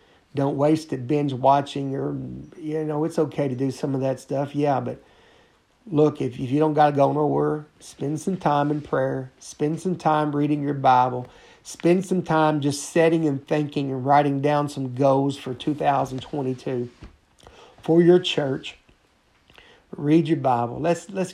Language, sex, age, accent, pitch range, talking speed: English, male, 50-69, American, 125-155 Hz, 165 wpm